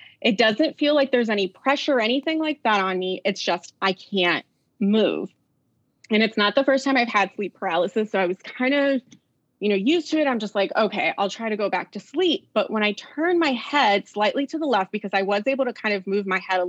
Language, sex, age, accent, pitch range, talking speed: English, female, 20-39, American, 190-240 Hz, 250 wpm